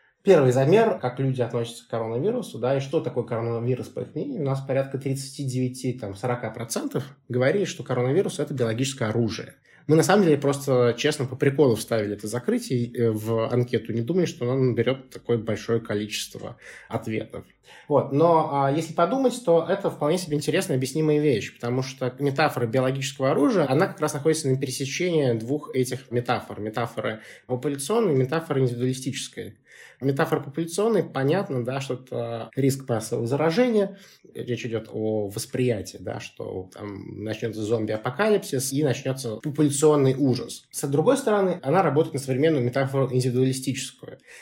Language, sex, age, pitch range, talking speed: Russian, male, 20-39, 120-150 Hz, 145 wpm